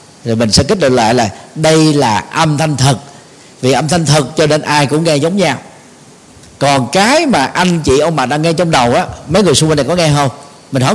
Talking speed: 245 wpm